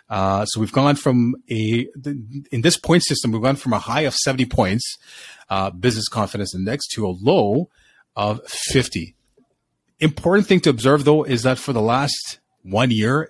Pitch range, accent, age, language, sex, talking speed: 105-135 Hz, American, 30-49, English, male, 175 wpm